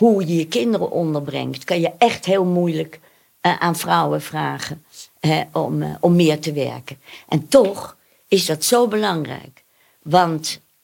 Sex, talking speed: female, 150 wpm